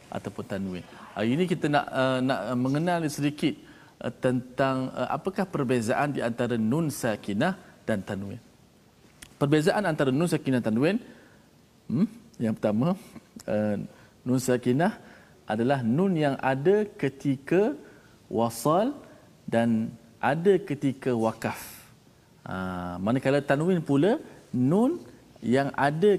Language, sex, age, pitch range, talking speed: Malayalam, male, 40-59, 120-165 Hz, 105 wpm